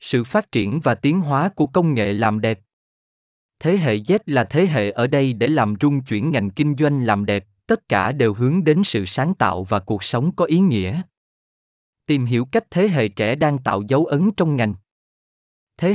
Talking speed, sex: 205 wpm, male